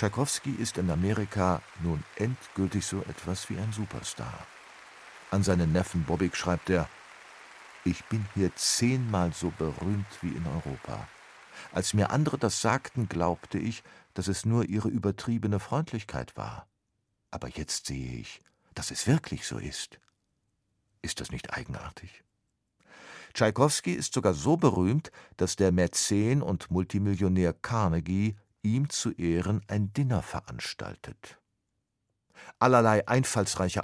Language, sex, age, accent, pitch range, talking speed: German, male, 50-69, German, 90-110 Hz, 130 wpm